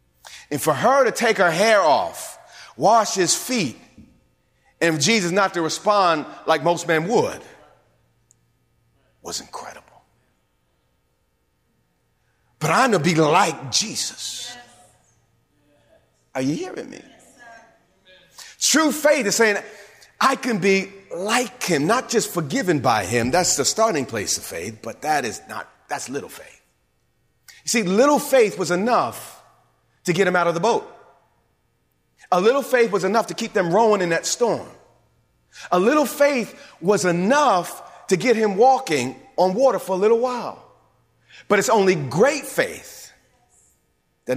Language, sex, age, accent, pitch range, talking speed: English, male, 40-59, American, 155-235 Hz, 145 wpm